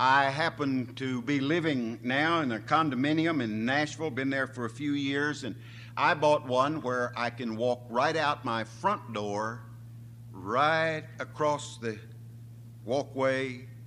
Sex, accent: male, American